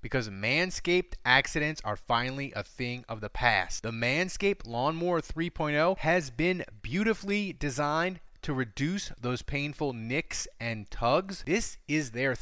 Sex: male